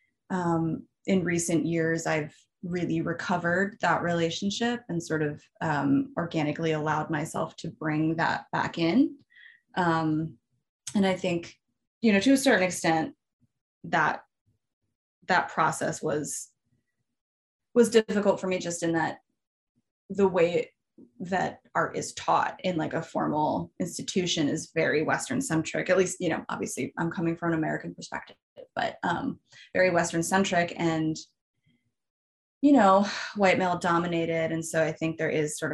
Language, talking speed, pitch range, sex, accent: English, 145 wpm, 160-195 Hz, female, American